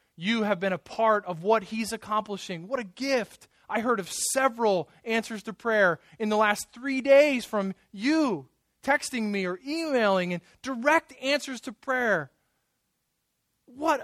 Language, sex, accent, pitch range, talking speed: English, male, American, 160-215 Hz, 155 wpm